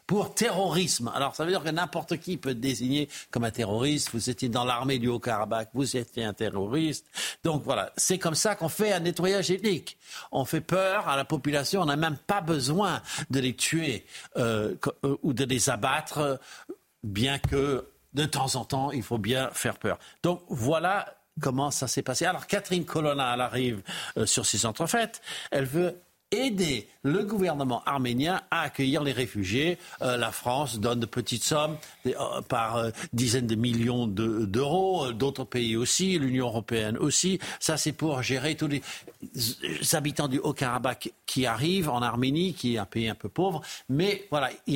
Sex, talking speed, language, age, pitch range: male, 180 wpm, French, 60-79, 125-165 Hz